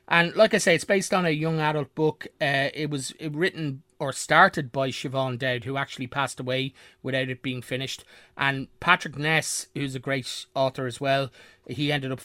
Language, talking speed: English, 195 wpm